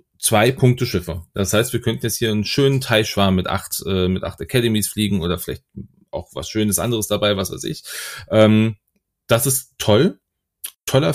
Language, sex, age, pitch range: German, male, 30-49, 95-120 Hz